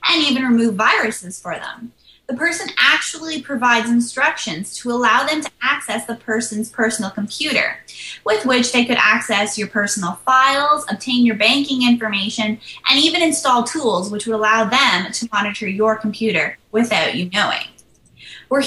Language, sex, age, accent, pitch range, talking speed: English, female, 20-39, American, 215-270 Hz, 155 wpm